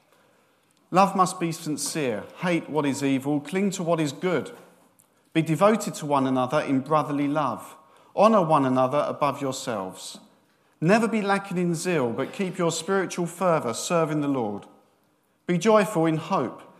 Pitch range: 130-170 Hz